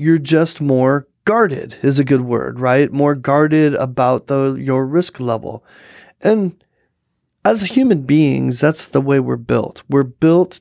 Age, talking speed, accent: 30-49, 155 wpm, American